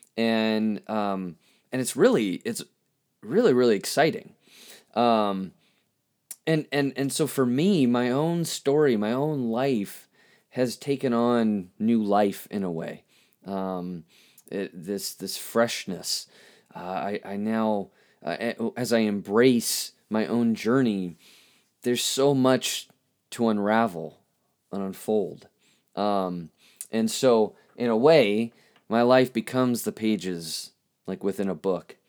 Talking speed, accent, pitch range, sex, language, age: 125 wpm, American, 100-130 Hz, male, English, 20-39